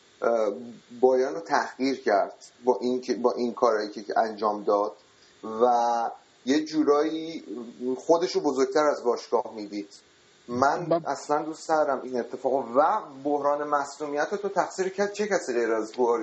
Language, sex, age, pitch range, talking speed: Persian, male, 30-49, 125-160 Hz, 135 wpm